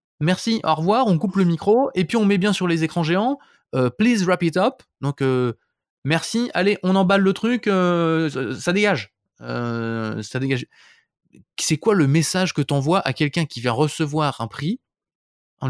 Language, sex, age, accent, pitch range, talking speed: French, male, 20-39, French, 135-190 Hz, 190 wpm